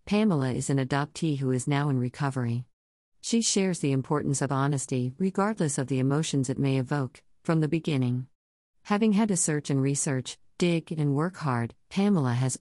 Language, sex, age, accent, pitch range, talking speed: English, female, 50-69, American, 130-160 Hz, 175 wpm